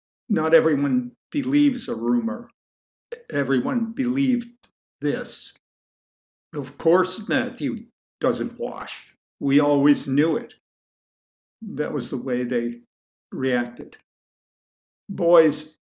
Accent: American